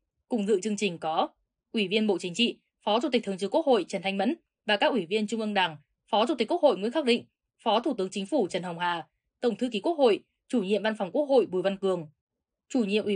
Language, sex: Vietnamese, female